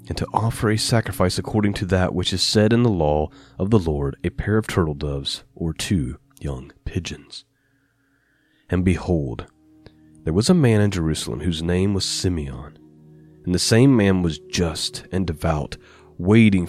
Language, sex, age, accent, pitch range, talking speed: English, male, 30-49, American, 85-115 Hz, 170 wpm